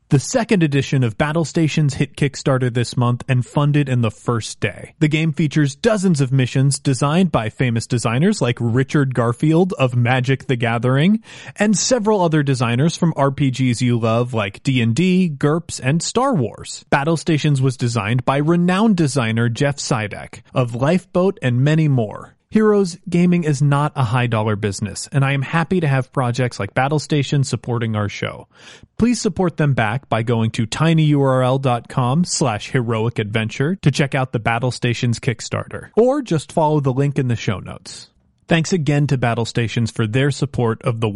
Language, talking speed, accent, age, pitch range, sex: English, 170 wpm, American, 30-49, 120-155 Hz, male